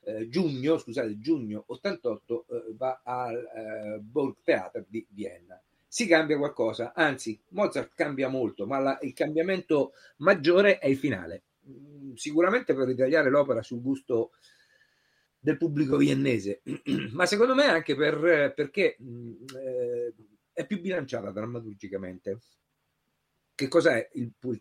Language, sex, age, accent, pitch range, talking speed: Italian, male, 50-69, native, 110-165 Hz, 130 wpm